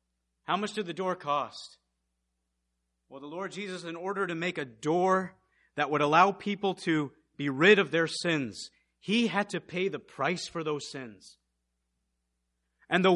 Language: English